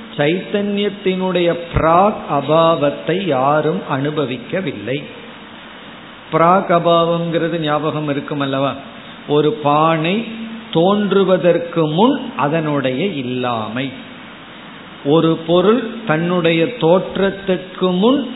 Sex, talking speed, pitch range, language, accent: male, 65 wpm, 150-195 Hz, Tamil, native